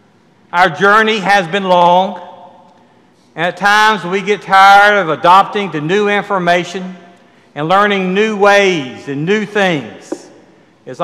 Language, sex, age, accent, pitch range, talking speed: English, male, 60-79, American, 160-200 Hz, 130 wpm